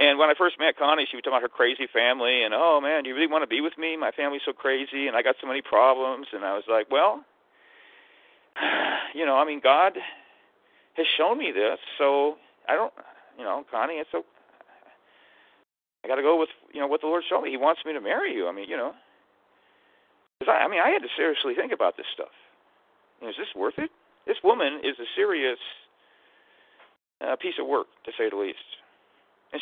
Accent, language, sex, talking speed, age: American, English, male, 225 wpm, 40-59